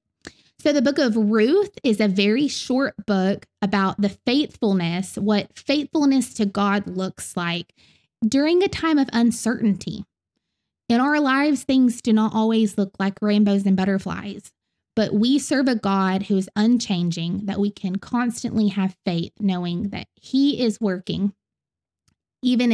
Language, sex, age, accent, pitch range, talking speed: English, female, 20-39, American, 195-260 Hz, 150 wpm